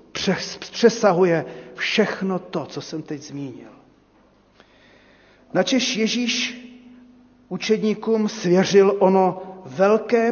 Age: 40-59